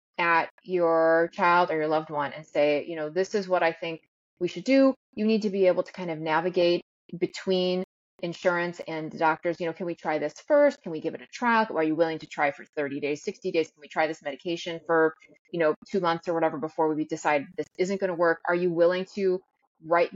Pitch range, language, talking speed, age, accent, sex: 165-215 Hz, English, 245 wpm, 30-49, American, female